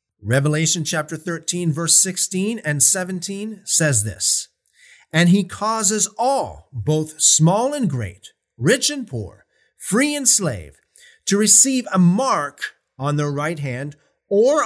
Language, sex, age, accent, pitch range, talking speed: English, male, 40-59, American, 135-215 Hz, 130 wpm